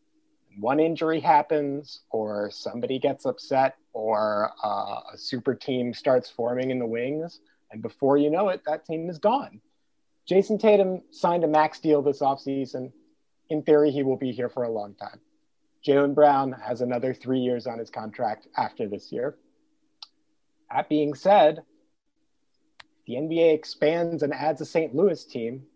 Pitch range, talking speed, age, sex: 130-185 Hz, 160 wpm, 30-49, male